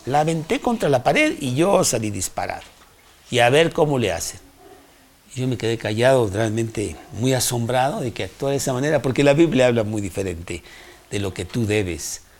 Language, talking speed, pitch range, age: Spanish, 195 wpm, 95-120 Hz, 60-79